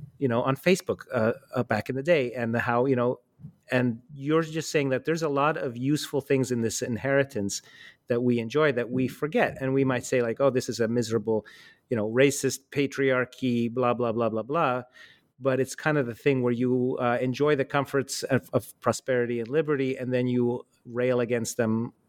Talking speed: 205 wpm